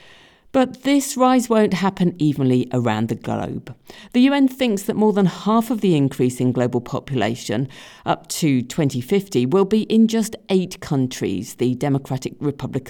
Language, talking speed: English, 160 wpm